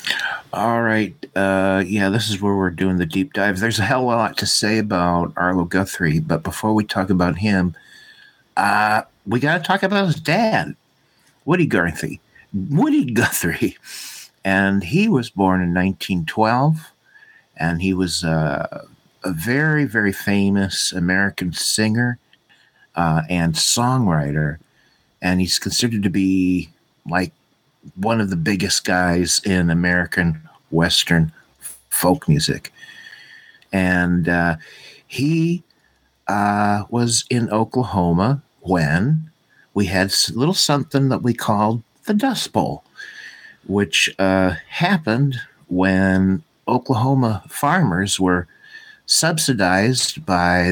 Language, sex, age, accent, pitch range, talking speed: English, male, 50-69, American, 90-135 Hz, 120 wpm